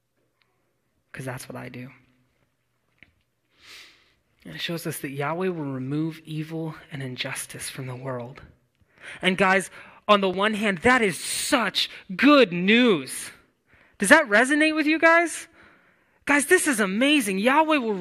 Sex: male